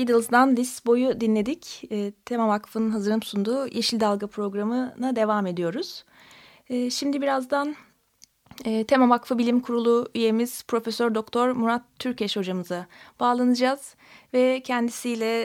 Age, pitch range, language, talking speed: 30-49, 215-245 Hz, Turkish, 115 wpm